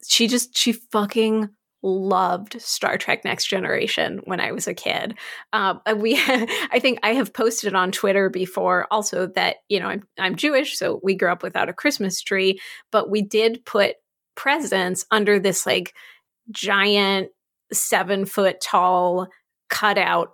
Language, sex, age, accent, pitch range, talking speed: English, female, 20-39, American, 185-240 Hz, 155 wpm